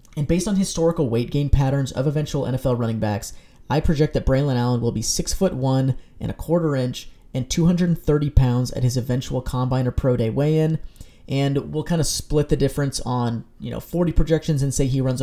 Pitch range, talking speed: 120-155 Hz, 210 wpm